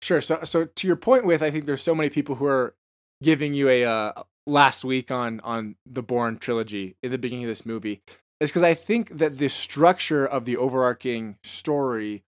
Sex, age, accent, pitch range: male, 20-39, American, 120-155 Hz